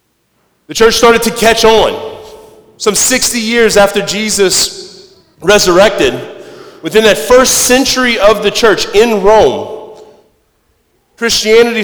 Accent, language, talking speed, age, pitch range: American, English, 110 wpm, 40-59, 175-235 Hz